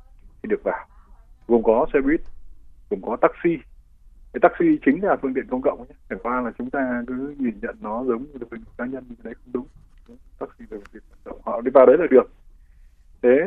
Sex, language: male, Vietnamese